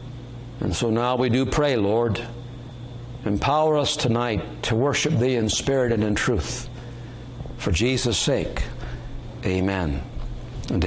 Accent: American